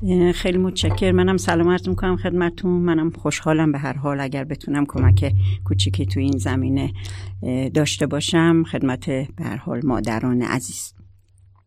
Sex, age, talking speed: female, 60-79, 135 wpm